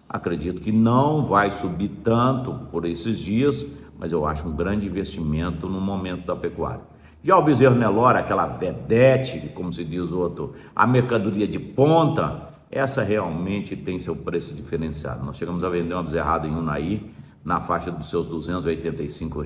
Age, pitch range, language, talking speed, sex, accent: 60-79, 80-110 Hz, Portuguese, 160 wpm, male, Brazilian